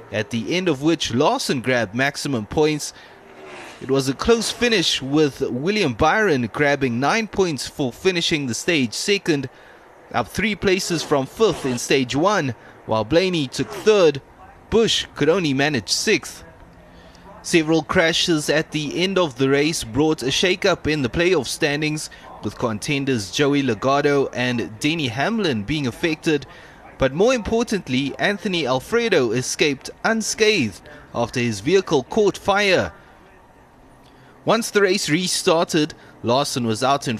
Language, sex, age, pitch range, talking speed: English, male, 20-39, 130-185 Hz, 140 wpm